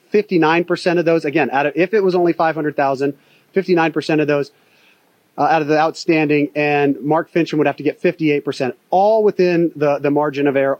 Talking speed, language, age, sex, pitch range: 185 wpm, English, 30-49, male, 150-185 Hz